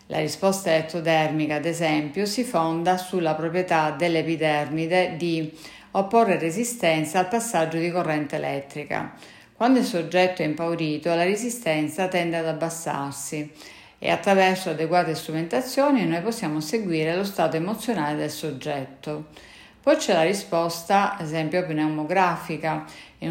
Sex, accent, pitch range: female, native, 160-195 Hz